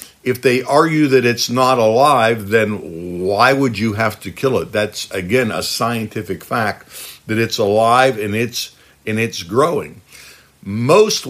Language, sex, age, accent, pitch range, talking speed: English, male, 50-69, American, 100-130 Hz, 155 wpm